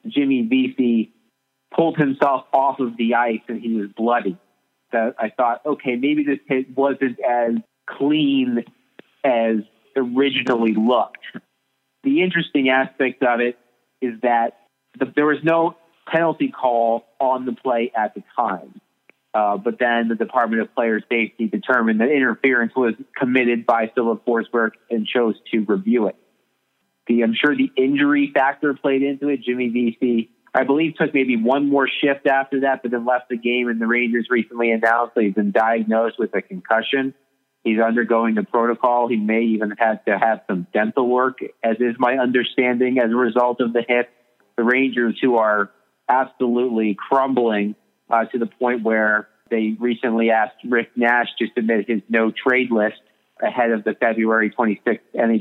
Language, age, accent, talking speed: English, 30-49, American, 165 wpm